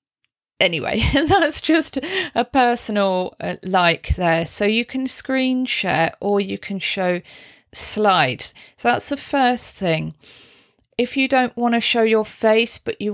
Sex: female